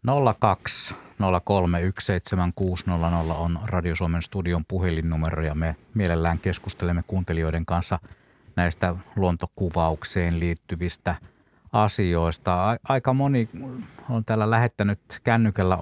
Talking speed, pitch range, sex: 85 wpm, 85-110 Hz, male